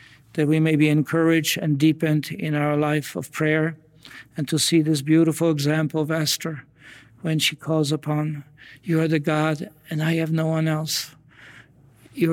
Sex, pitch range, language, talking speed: male, 145-160 Hz, English, 170 wpm